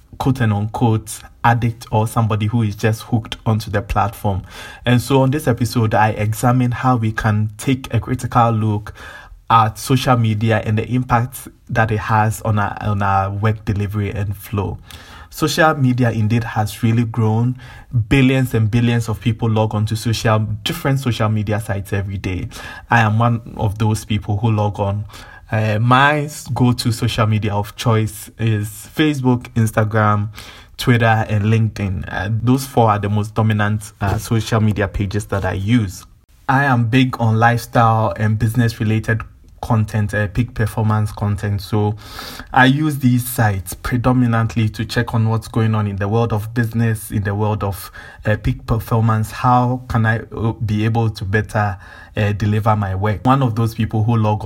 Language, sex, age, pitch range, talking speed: English, male, 20-39, 105-120 Hz, 165 wpm